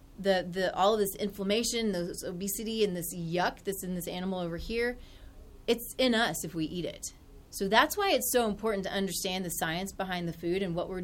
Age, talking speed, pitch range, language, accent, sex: 30-49, 215 wpm, 175-210 Hz, English, American, female